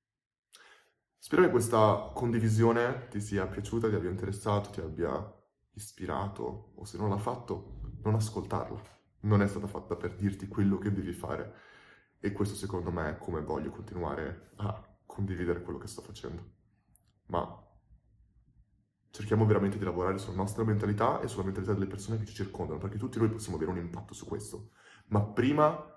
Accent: native